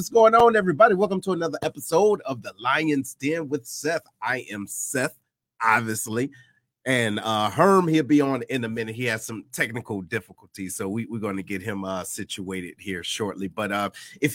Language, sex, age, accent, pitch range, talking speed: English, male, 30-49, American, 110-155 Hz, 190 wpm